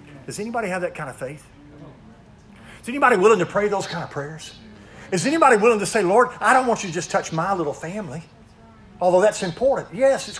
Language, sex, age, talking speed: English, male, 50-69, 215 wpm